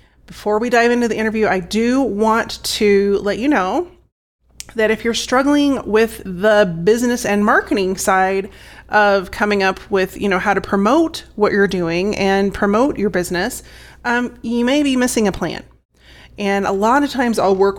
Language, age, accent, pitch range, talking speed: English, 30-49, American, 195-235 Hz, 180 wpm